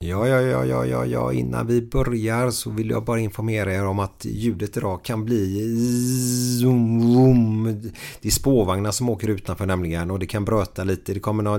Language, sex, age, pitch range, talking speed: Swedish, male, 30-49, 95-120 Hz, 190 wpm